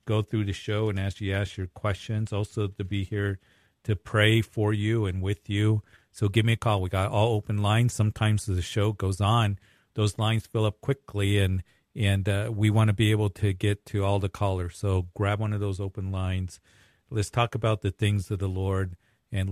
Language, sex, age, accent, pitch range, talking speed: English, male, 40-59, American, 100-110 Hz, 220 wpm